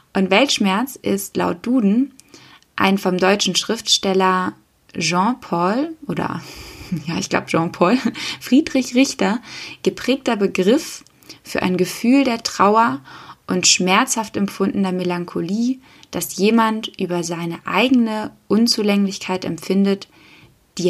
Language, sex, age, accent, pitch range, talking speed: German, female, 20-39, German, 180-230 Hz, 105 wpm